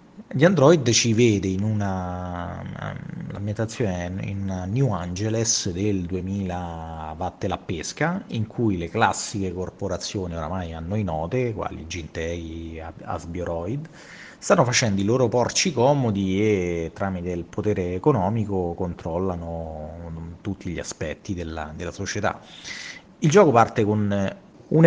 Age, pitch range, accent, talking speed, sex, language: 30-49, 90-110 Hz, native, 125 wpm, male, Italian